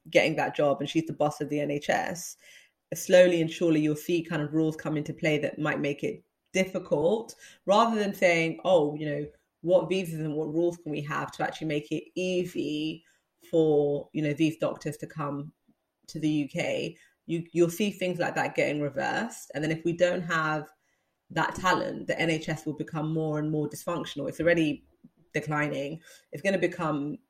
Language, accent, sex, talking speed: English, British, female, 190 wpm